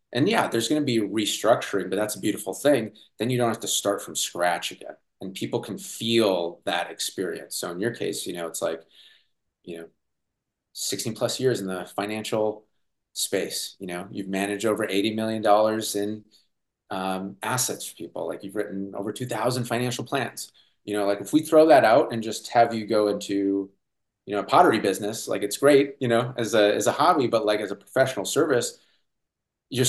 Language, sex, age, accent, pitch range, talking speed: English, male, 30-49, American, 95-110 Hz, 205 wpm